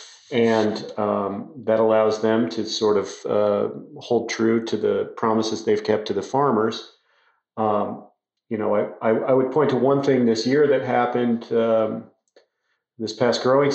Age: 40-59